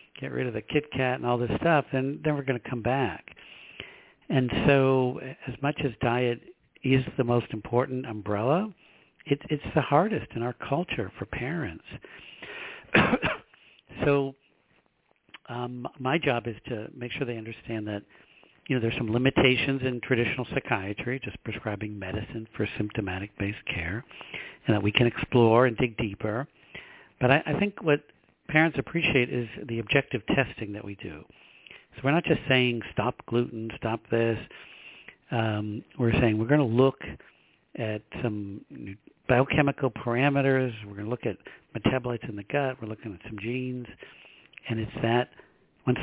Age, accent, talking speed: 60-79, American, 160 wpm